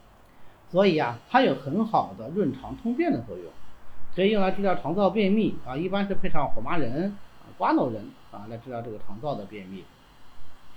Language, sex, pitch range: Chinese, male, 130-205 Hz